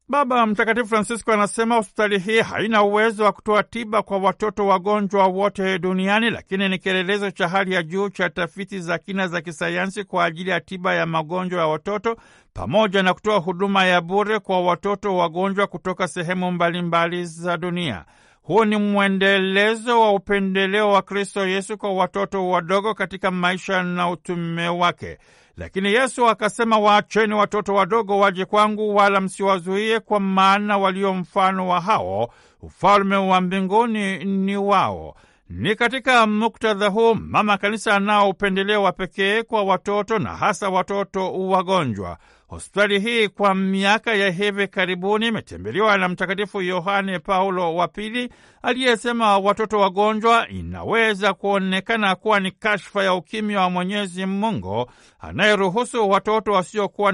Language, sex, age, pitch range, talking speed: Swahili, male, 60-79, 185-210 Hz, 140 wpm